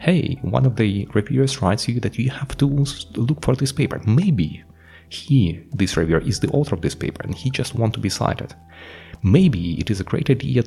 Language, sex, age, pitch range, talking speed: English, male, 30-49, 85-135 Hz, 215 wpm